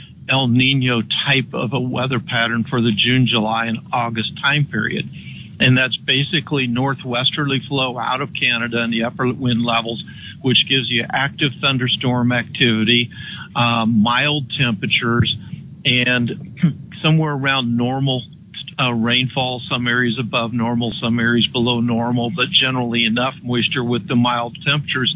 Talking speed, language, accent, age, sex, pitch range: 140 wpm, English, American, 50-69, male, 120-140 Hz